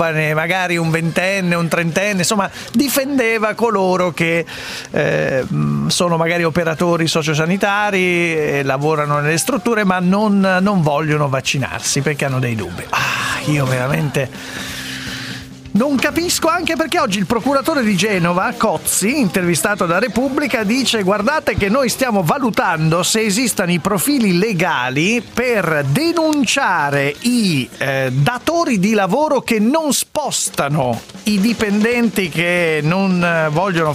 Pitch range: 160-235 Hz